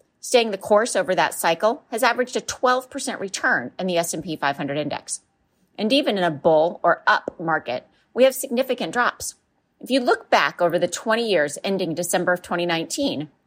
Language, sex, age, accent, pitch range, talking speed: English, female, 30-49, American, 170-245 Hz, 180 wpm